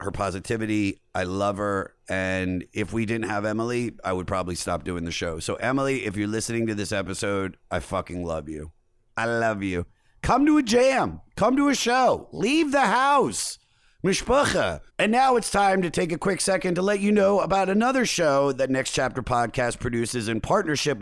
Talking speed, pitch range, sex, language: 195 wpm, 105-150 Hz, male, English